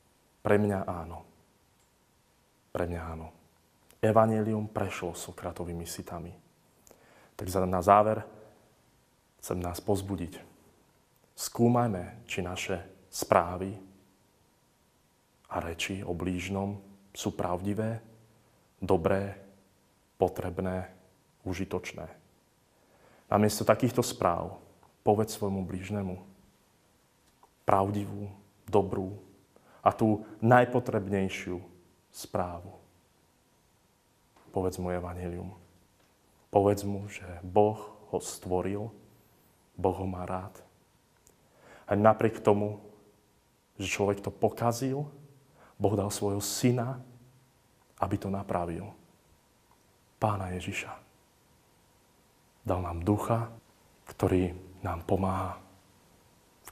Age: 30-49